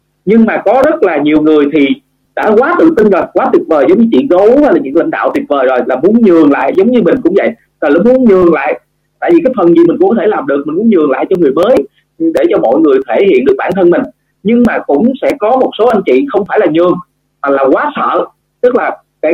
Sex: male